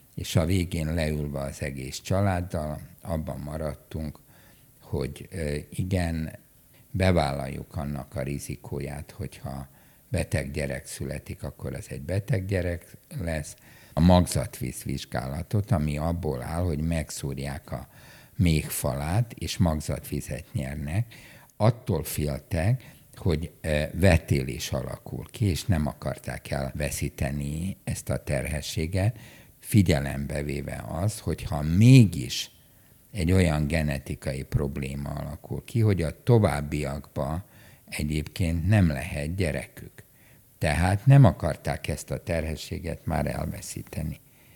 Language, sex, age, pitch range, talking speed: Hungarian, male, 60-79, 75-100 Hz, 105 wpm